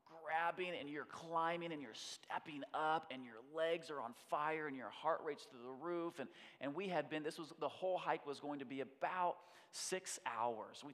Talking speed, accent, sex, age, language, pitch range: 215 wpm, American, male, 30-49, English, 130-185 Hz